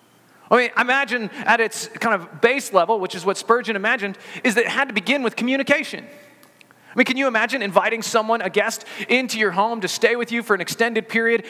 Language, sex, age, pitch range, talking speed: English, male, 30-49, 205-255 Hz, 220 wpm